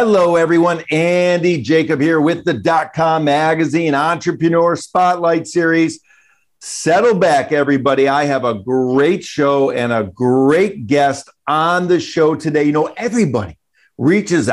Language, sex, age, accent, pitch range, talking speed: English, male, 50-69, American, 130-160 Hz, 130 wpm